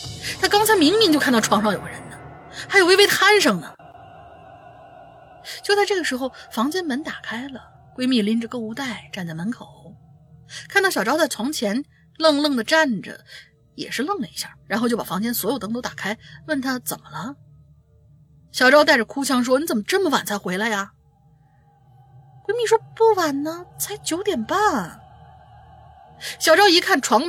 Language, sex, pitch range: Chinese, female, 190-290 Hz